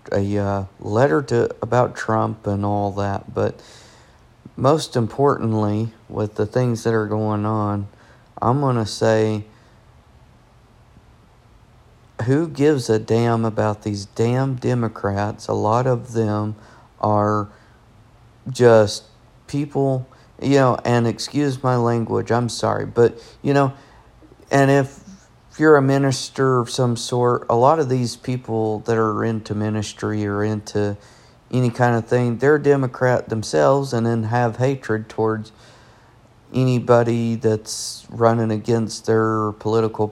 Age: 40-59